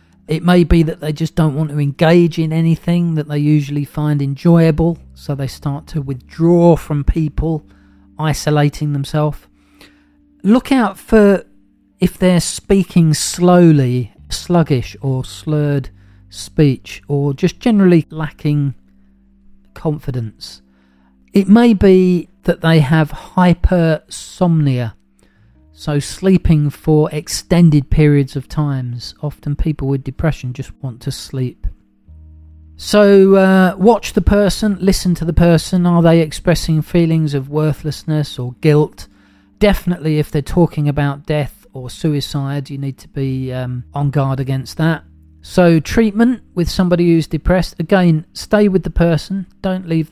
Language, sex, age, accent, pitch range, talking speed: English, male, 40-59, British, 130-170 Hz, 135 wpm